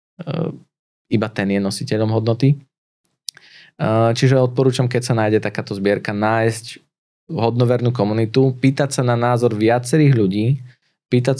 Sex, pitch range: male, 100-125 Hz